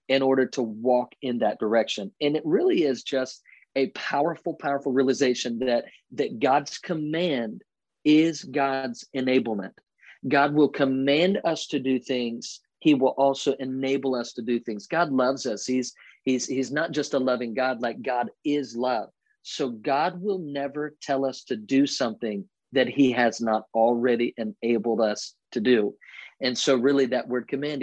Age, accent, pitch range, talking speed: 40-59, American, 120-145 Hz, 165 wpm